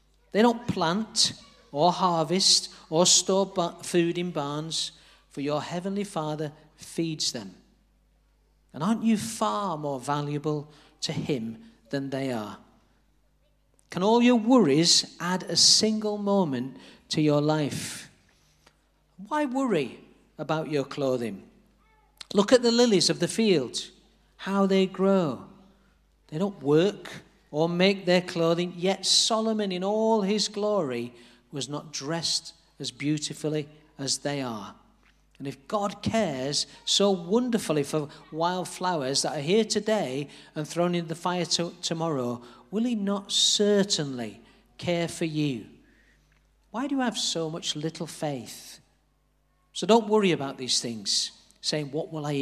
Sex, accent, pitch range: male, British, 150-195 Hz